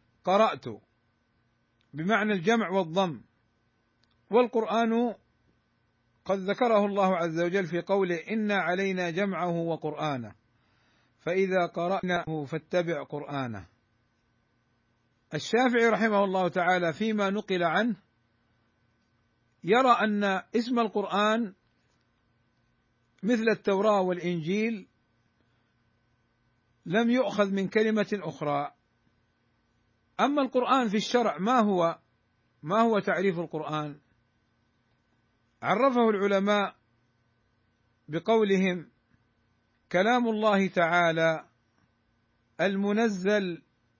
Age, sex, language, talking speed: 50-69, male, Arabic, 75 wpm